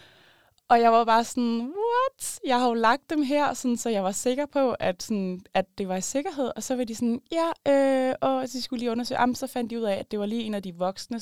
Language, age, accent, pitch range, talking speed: Danish, 20-39, native, 180-230 Hz, 280 wpm